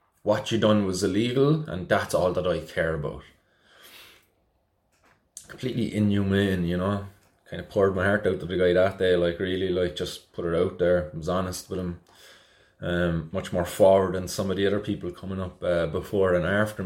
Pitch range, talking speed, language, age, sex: 90-110 Hz, 200 wpm, English, 20-39, male